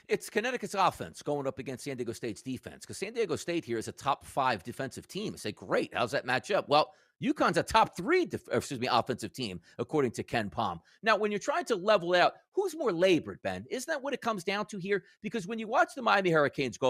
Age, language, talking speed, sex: 40-59, English, 250 wpm, male